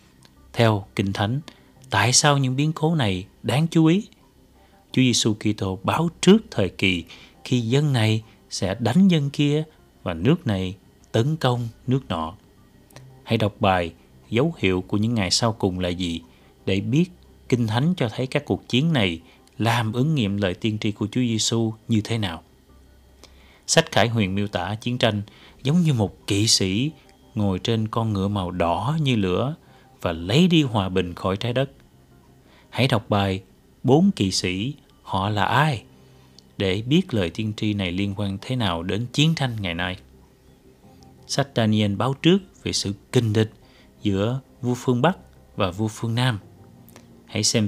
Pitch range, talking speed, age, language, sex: 95-125 Hz, 170 wpm, 30-49, Vietnamese, male